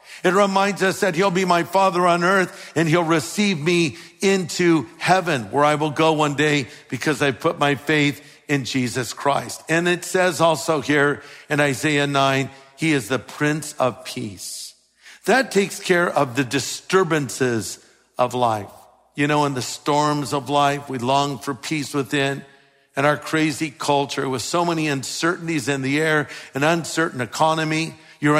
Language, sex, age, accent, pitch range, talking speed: English, male, 60-79, American, 140-175 Hz, 165 wpm